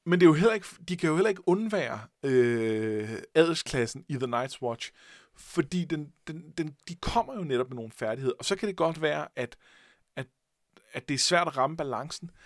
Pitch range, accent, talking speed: 130-175 Hz, native, 210 wpm